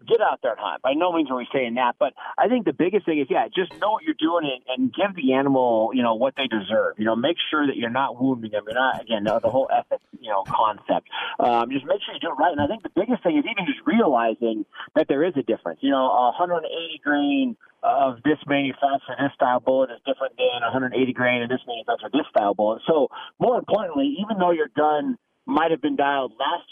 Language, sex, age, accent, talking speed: English, male, 30-49, American, 260 wpm